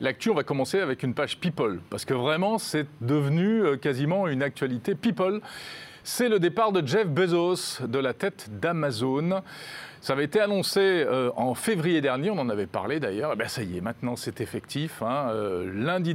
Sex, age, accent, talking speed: male, 40-59, French, 180 wpm